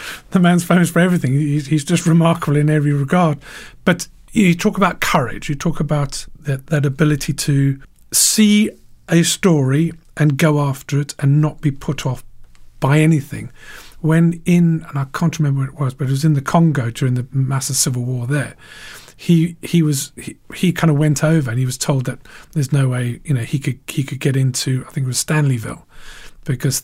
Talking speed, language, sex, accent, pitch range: 200 wpm, English, male, British, 135-170 Hz